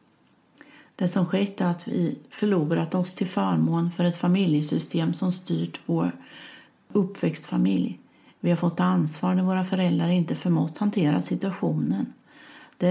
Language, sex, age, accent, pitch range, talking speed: Swedish, female, 40-59, native, 160-205 Hz, 135 wpm